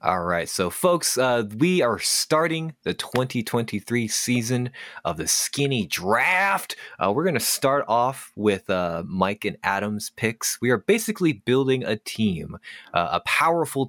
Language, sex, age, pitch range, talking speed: English, male, 20-39, 95-135 Hz, 155 wpm